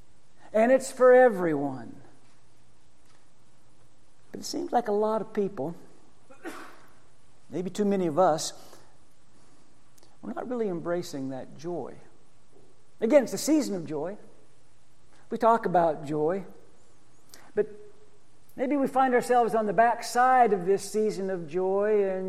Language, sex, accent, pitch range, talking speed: English, male, American, 185-245 Hz, 125 wpm